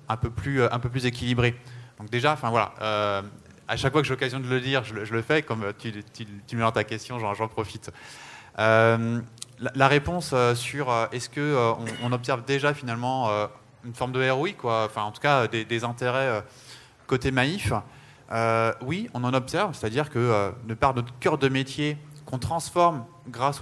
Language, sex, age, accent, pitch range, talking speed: French, male, 20-39, French, 115-140 Hz, 200 wpm